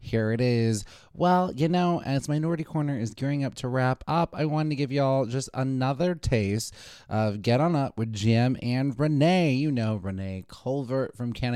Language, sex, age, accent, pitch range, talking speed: English, male, 20-39, American, 115-150 Hz, 195 wpm